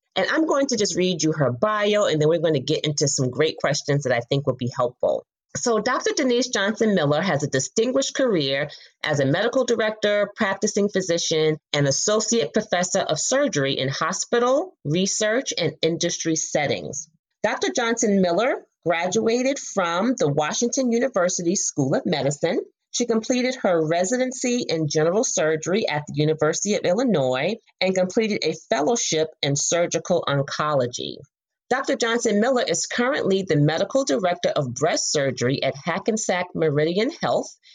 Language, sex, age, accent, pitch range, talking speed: English, female, 30-49, American, 155-230 Hz, 150 wpm